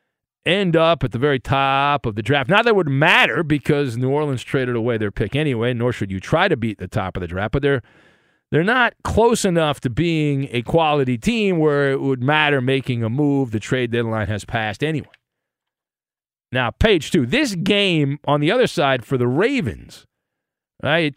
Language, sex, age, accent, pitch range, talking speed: English, male, 40-59, American, 135-195 Hz, 200 wpm